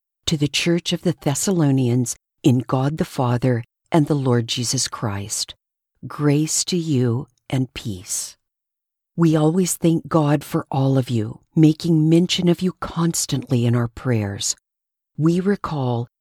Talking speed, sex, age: 140 wpm, female, 50-69